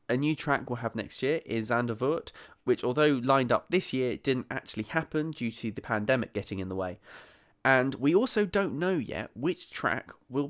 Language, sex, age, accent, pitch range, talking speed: English, male, 20-39, British, 110-150 Hz, 200 wpm